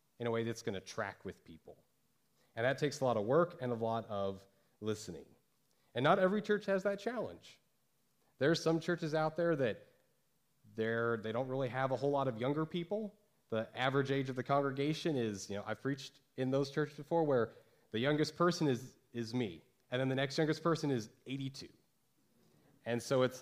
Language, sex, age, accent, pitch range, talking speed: English, male, 30-49, American, 120-155 Hz, 195 wpm